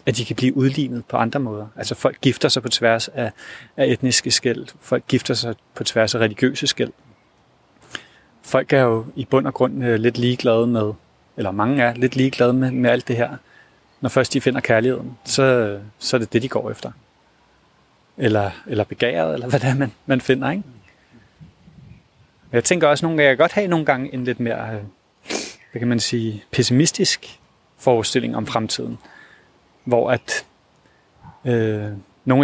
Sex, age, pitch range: male, 30-49, 115-135 Hz